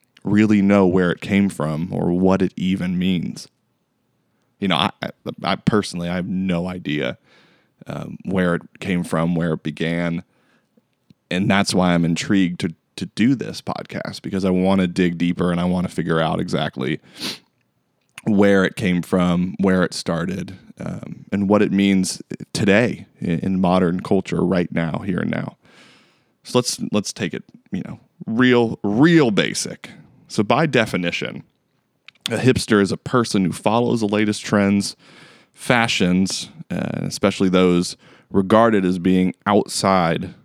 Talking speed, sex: 155 wpm, male